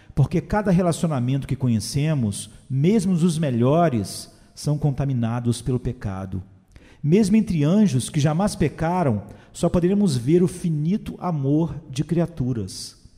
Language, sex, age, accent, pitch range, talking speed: Portuguese, male, 40-59, Brazilian, 115-170 Hz, 120 wpm